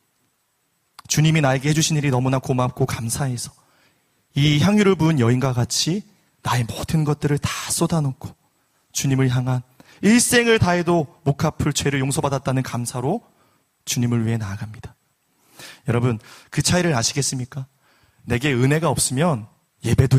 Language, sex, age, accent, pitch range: Korean, male, 30-49, native, 130-190 Hz